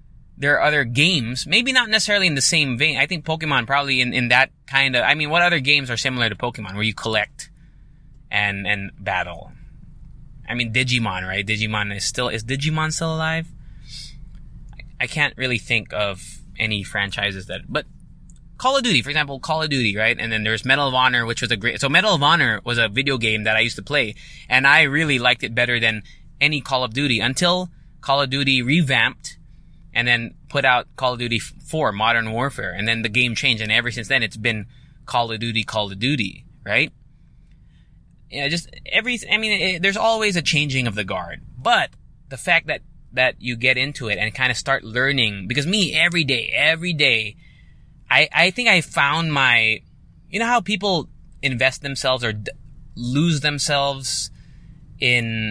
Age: 20-39